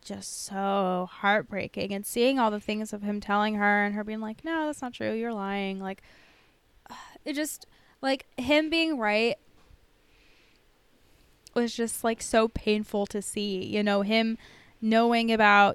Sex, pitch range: female, 205-240 Hz